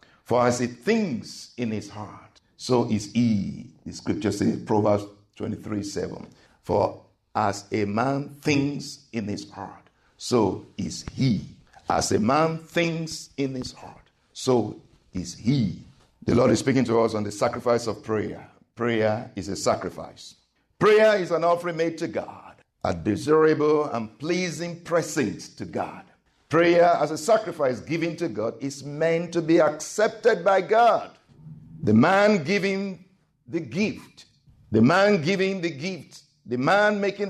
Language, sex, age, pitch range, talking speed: English, male, 50-69, 120-170 Hz, 150 wpm